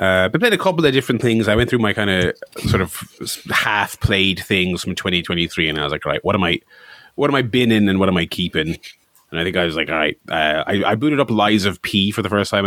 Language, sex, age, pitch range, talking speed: English, male, 30-49, 85-105 Hz, 280 wpm